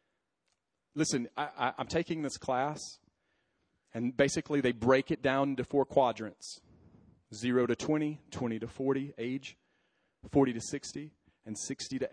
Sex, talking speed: male, 135 wpm